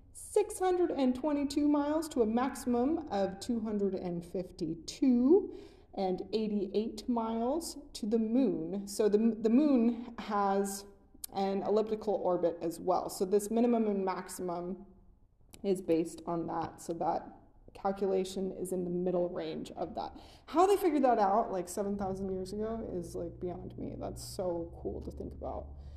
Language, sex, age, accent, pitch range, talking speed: English, female, 20-39, American, 185-230 Hz, 145 wpm